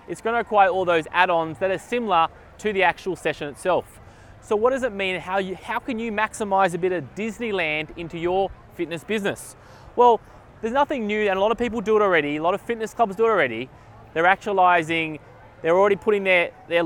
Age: 20-39